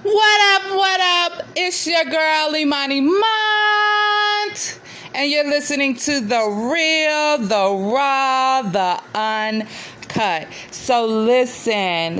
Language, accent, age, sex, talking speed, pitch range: English, American, 30-49, female, 105 wpm, 185-260 Hz